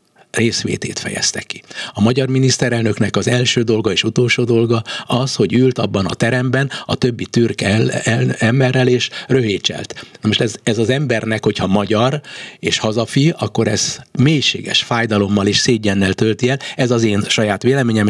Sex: male